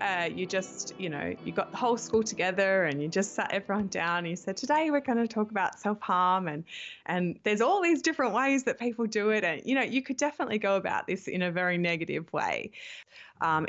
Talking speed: 230 wpm